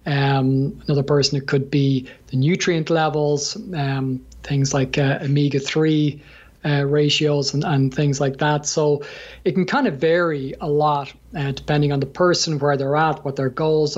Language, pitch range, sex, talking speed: English, 140-155 Hz, male, 170 wpm